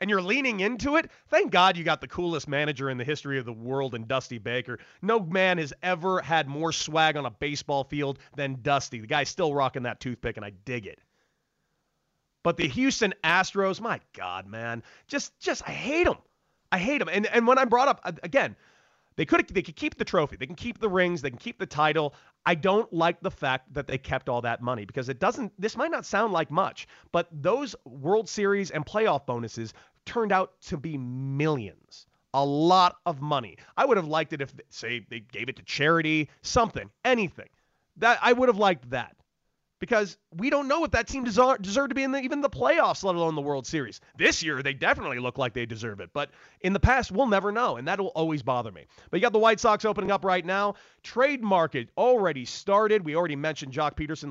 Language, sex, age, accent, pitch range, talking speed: English, male, 30-49, American, 135-205 Hz, 225 wpm